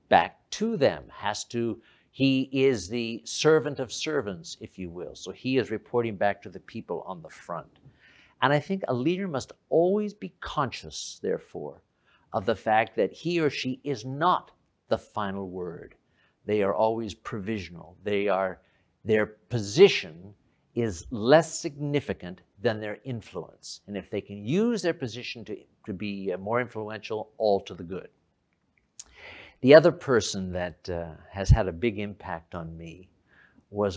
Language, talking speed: English, 160 wpm